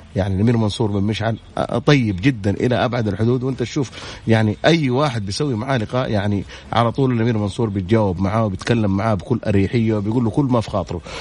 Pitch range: 105-140 Hz